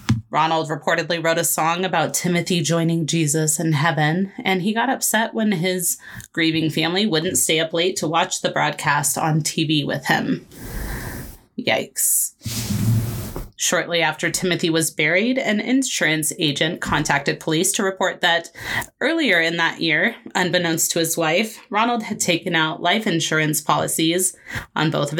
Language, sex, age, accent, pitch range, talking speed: English, female, 20-39, American, 155-185 Hz, 150 wpm